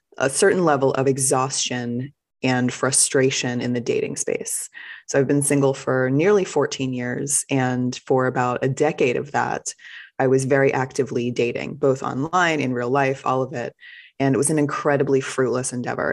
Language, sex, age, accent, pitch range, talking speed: English, female, 20-39, American, 130-150 Hz, 170 wpm